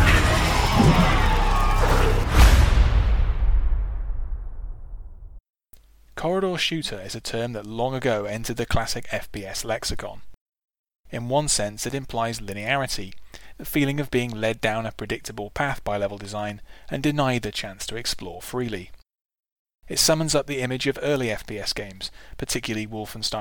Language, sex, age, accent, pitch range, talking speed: English, male, 20-39, British, 100-125 Hz, 125 wpm